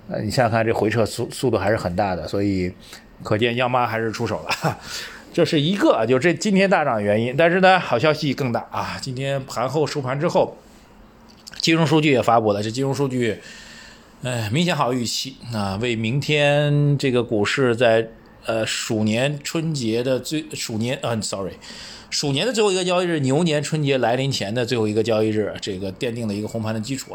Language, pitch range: Chinese, 110-150 Hz